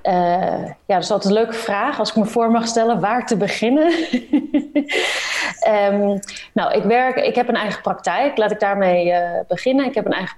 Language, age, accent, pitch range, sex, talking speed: Dutch, 30-49, Dutch, 175-220 Hz, female, 190 wpm